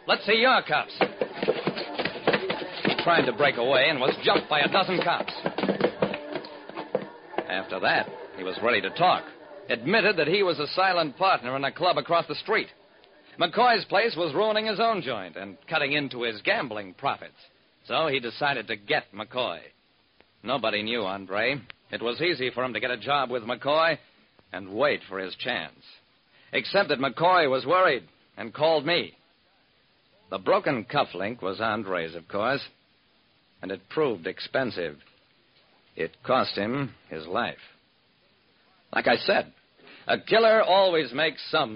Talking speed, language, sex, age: 155 wpm, English, male, 50-69